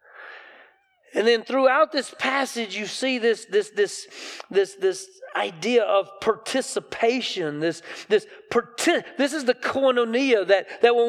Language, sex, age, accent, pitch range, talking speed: English, male, 40-59, American, 220-325 Hz, 130 wpm